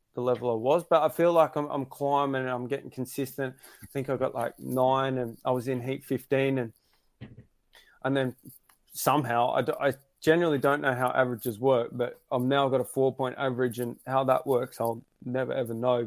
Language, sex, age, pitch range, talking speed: English, male, 20-39, 125-140 Hz, 210 wpm